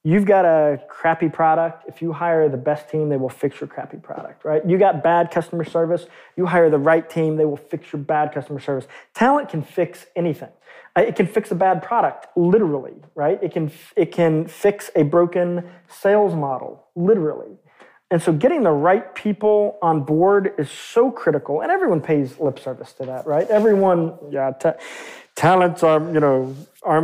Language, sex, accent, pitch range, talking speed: English, male, American, 155-190 Hz, 180 wpm